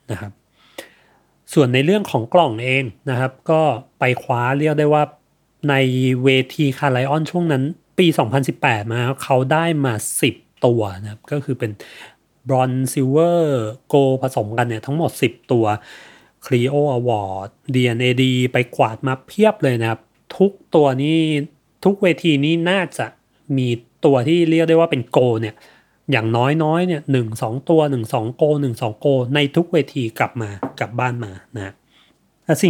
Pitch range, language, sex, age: 125-160 Hz, Thai, male, 30-49